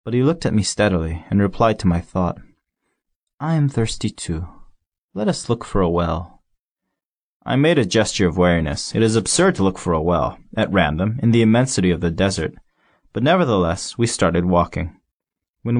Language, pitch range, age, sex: Chinese, 90-120 Hz, 30-49, male